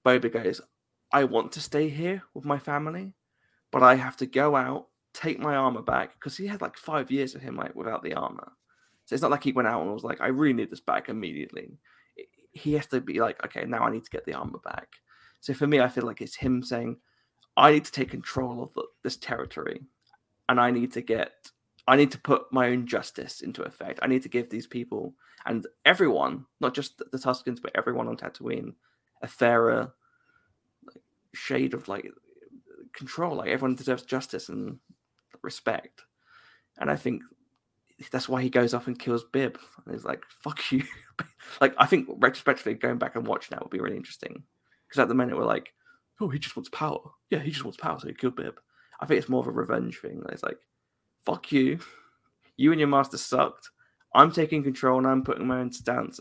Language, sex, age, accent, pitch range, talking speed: English, male, 20-39, British, 125-150 Hz, 210 wpm